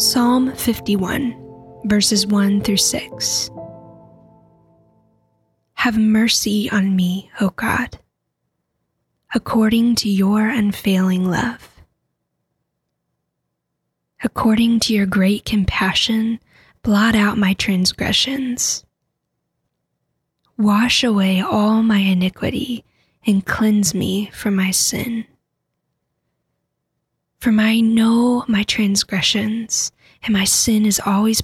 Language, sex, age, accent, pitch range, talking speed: English, female, 10-29, American, 195-230 Hz, 90 wpm